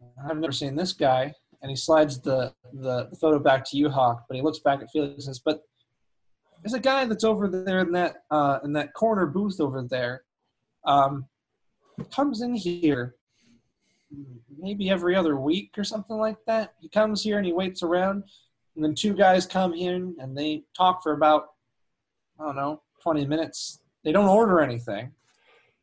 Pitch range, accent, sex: 135-190 Hz, American, male